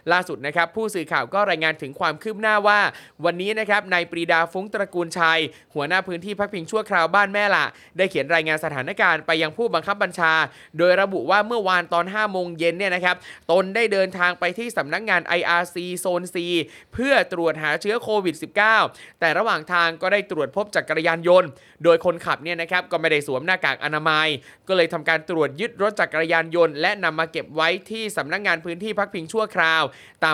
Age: 20-39